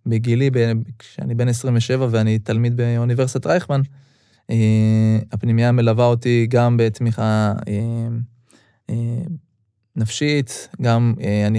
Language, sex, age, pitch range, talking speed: Hebrew, male, 20-39, 110-125 Hz, 85 wpm